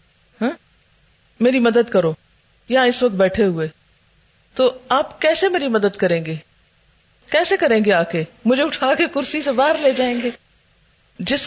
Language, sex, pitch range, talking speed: Urdu, female, 200-275 Hz, 160 wpm